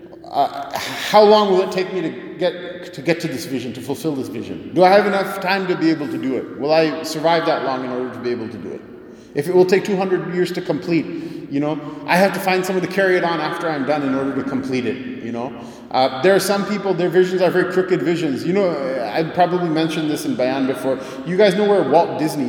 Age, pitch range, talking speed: 30-49, 140-180 Hz, 260 wpm